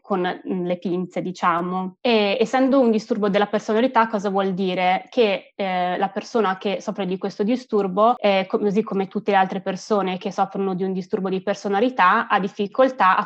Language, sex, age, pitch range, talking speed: Italian, female, 20-39, 195-220 Hz, 180 wpm